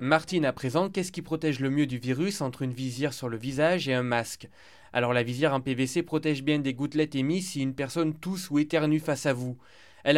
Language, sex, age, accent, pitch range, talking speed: French, male, 20-39, French, 130-165 Hz, 230 wpm